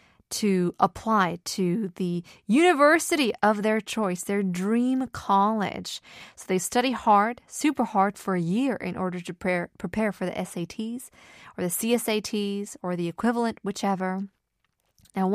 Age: 20-39